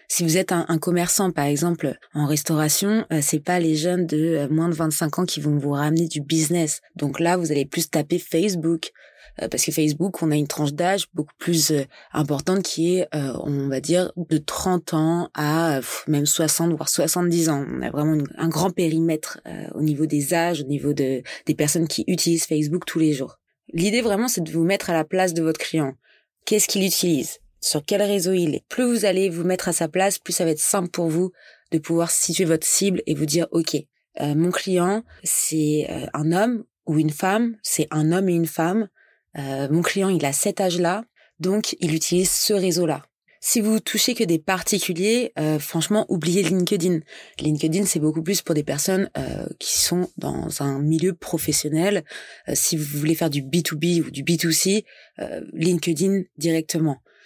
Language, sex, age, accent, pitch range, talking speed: French, female, 20-39, French, 155-185 Hz, 200 wpm